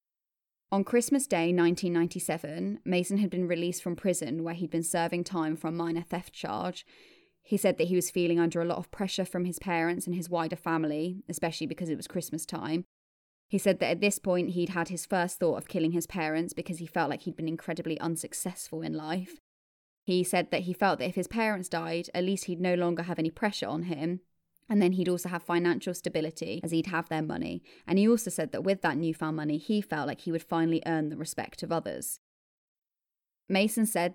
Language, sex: English, female